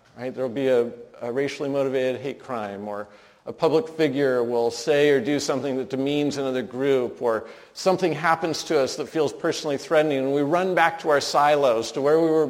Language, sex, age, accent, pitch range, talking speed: English, male, 50-69, American, 130-155 Hz, 205 wpm